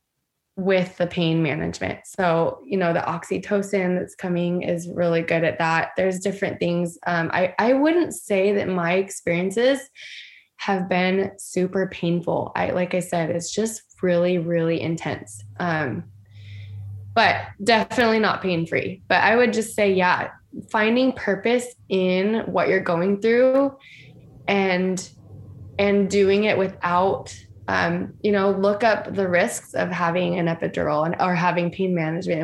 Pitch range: 175-205 Hz